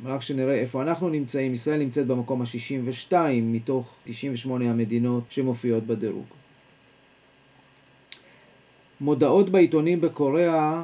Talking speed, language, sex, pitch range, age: 95 wpm, Hebrew, male, 125-155 Hz, 40-59